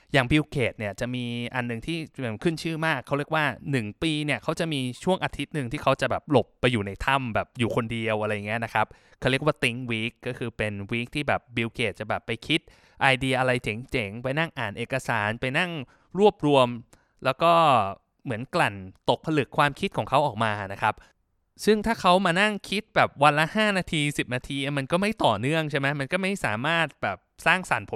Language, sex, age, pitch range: Thai, male, 20-39, 115-150 Hz